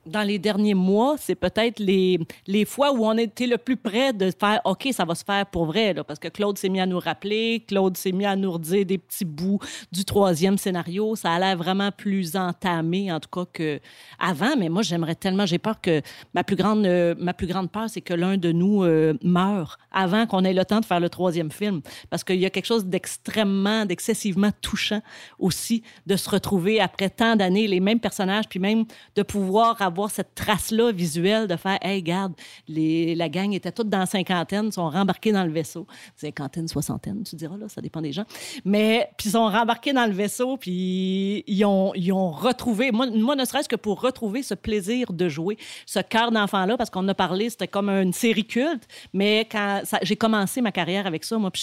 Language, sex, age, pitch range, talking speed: French, female, 40-59, 180-215 Hz, 225 wpm